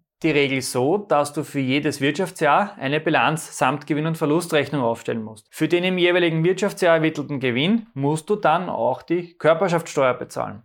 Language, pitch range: German, 140-190 Hz